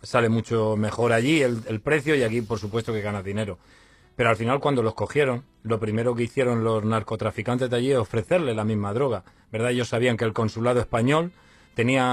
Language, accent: Spanish, Spanish